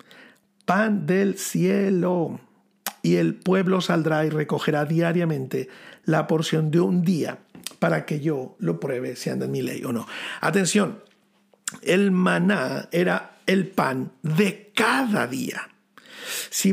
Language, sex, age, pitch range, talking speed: Spanish, male, 50-69, 160-205 Hz, 135 wpm